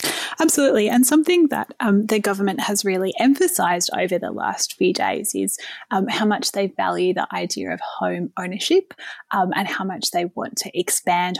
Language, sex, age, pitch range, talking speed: English, female, 20-39, 185-245 Hz, 180 wpm